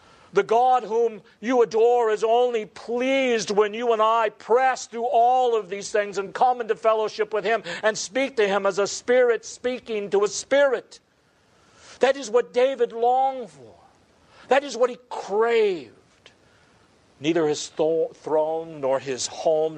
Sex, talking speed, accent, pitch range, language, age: male, 160 wpm, American, 180-250 Hz, English, 50-69